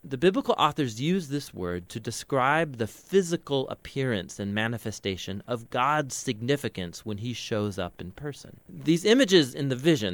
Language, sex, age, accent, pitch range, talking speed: English, male, 30-49, American, 110-155 Hz, 160 wpm